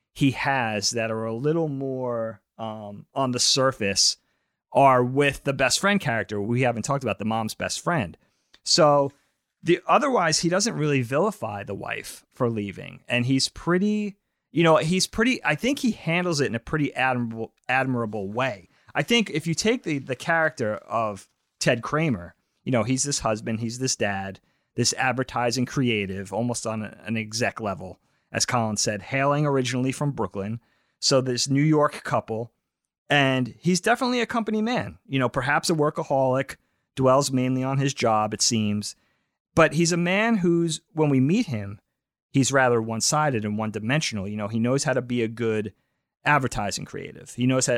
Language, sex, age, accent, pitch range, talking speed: English, male, 30-49, American, 110-145 Hz, 175 wpm